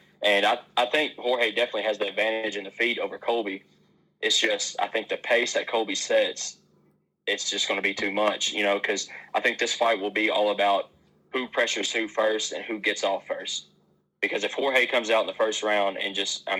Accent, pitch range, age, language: American, 100-115 Hz, 20-39, English